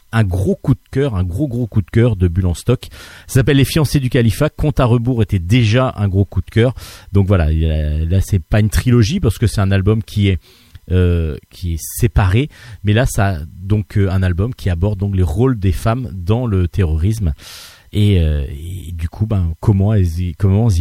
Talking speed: 215 wpm